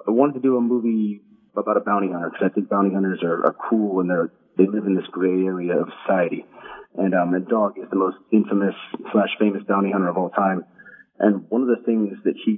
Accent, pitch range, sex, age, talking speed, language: American, 90-105 Hz, male, 30-49, 240 wpm, English